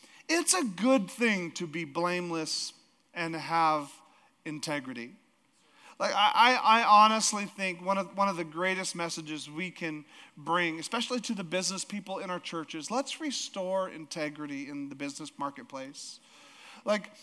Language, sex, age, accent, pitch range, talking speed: English, male, 40-59, American, 165-245 Hz, 145 wpm